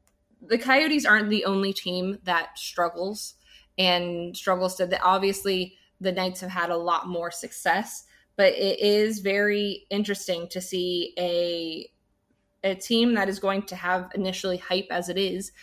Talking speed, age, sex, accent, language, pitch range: 155 wpm, 20-39, female, American, English, 175-205 Hz